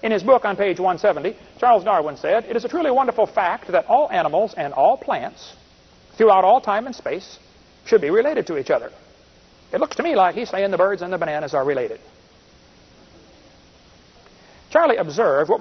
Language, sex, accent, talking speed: Filipino, male, American, 190 wpm